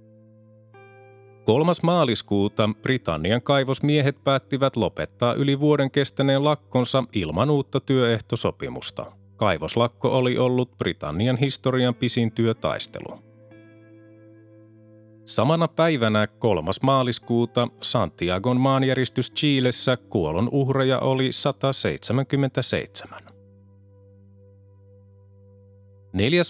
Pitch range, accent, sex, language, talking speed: 105-135 Hz, native, male, Finnish, 70 wpm